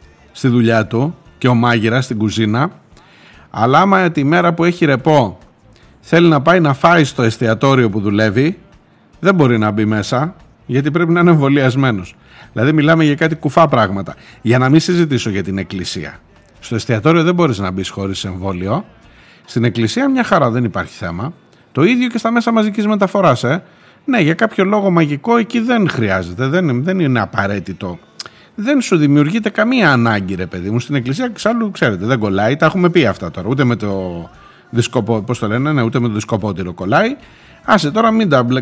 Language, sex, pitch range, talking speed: Greek, male, 115-190 Hz, 170 wpm